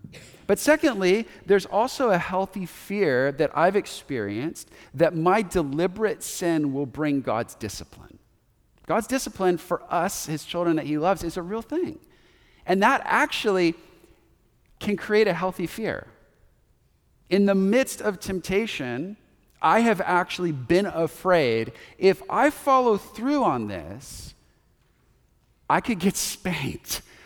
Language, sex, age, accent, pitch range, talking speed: English, male, 40-59, American, 165-215 Hz, 130 wpm